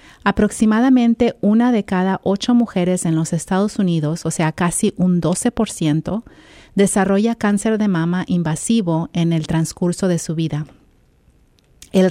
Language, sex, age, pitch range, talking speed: English, female, 30-49, 175-215 Hz, 135 wpm